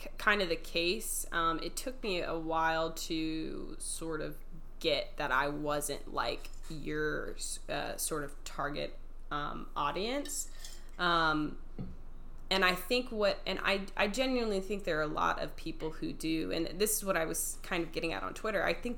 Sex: female